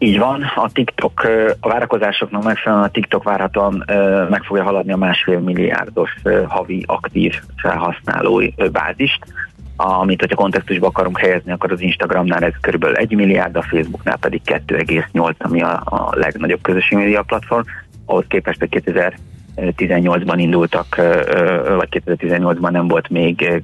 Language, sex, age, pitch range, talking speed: Hungarian, male, 30-49, 85-100 Hz, 130 wpm